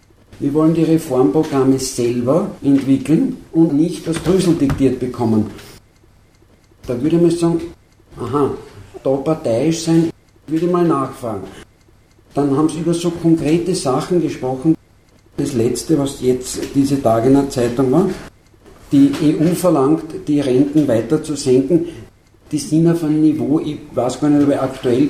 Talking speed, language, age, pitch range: 150 wpm, German, 50-69, 125-160 Hz